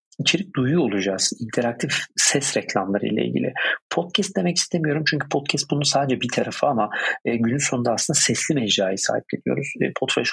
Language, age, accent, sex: Turkish, 40-59, native, male